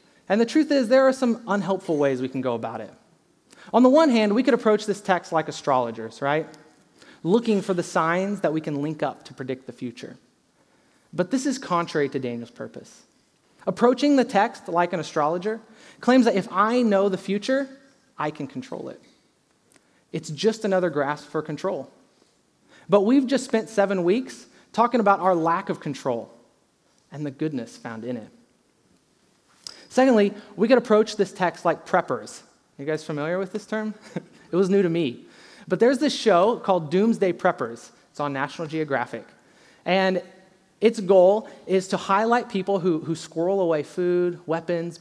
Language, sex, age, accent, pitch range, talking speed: English, male, 30-49, American, 160-215 Hz, 175 wpm